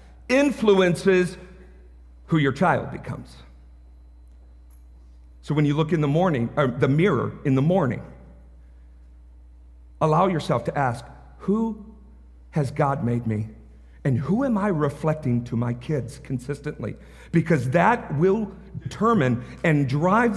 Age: 50-69